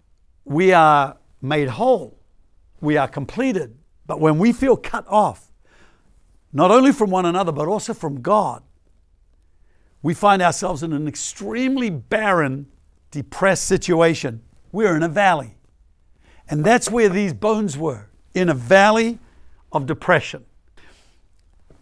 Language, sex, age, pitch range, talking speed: English, male, 60-79, 115-195 Hz, 125 wpm